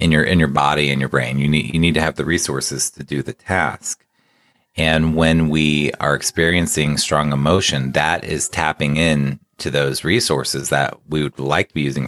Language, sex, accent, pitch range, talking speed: English, male, American, 70-90 Hz, 205 wpm